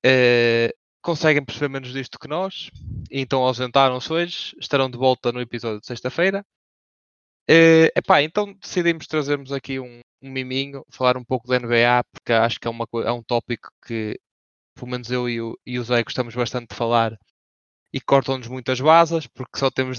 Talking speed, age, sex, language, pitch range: 180 wpm, 20-39, male, English, 120-140 Hz